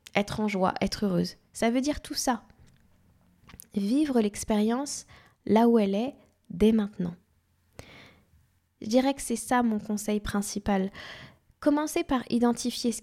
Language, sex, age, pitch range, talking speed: French, female, 10-29, 210-260 Hz, 140 wpm